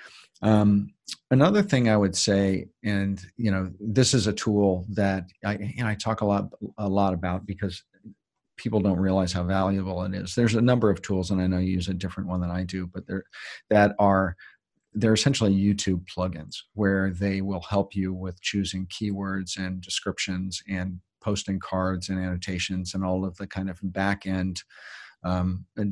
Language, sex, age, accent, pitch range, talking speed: English, male, 40-59, American, 95-100 Hz, 190 wpm